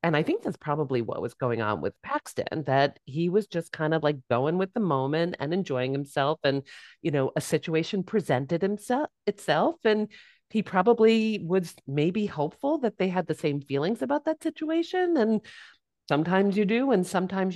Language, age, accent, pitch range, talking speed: English, 40-59, American, 135-195 Hz, 185 wpm